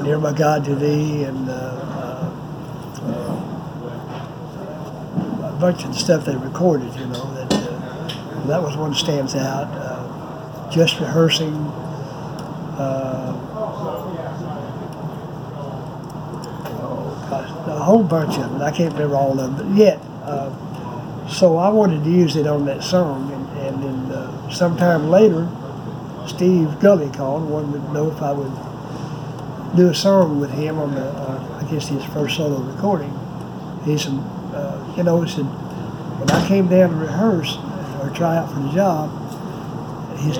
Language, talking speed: English, 150 wpm